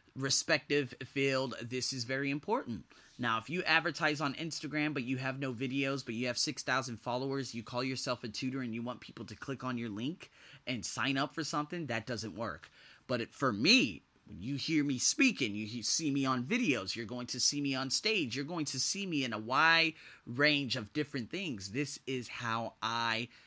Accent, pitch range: American, 115-150 Hz